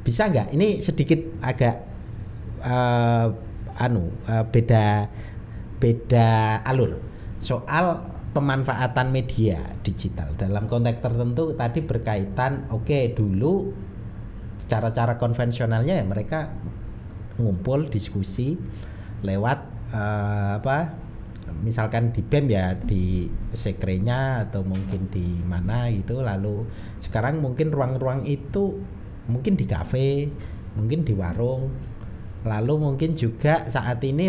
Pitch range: 105-135 Hz